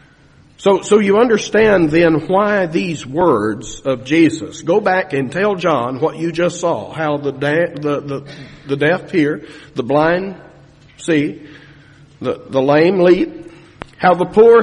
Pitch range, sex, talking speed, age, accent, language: 125-160 Hz, male, 150 wpm, 60-79, American, English